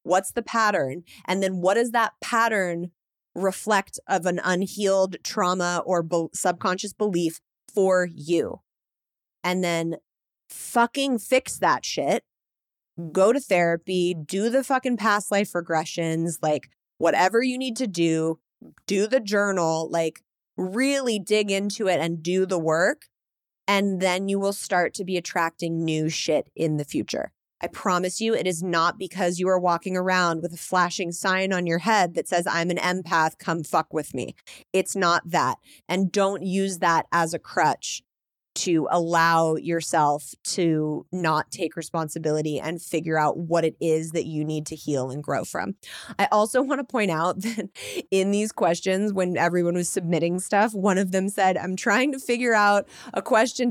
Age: 20-39